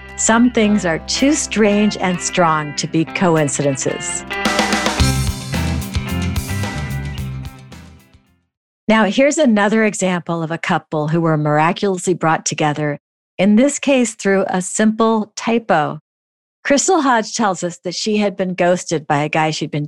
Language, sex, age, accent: English, female, 50-69, American